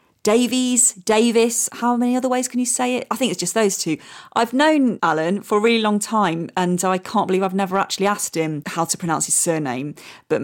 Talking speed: 225 wpm